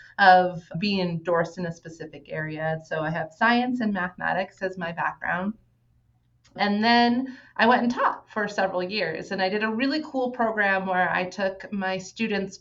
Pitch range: 180-230 Hz